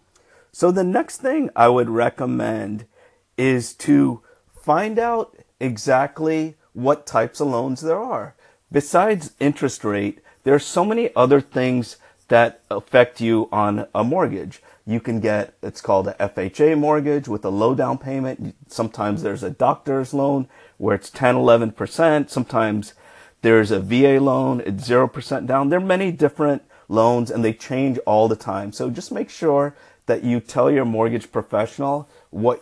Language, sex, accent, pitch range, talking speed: English, male, American, 110-145 Hz, 155 wpm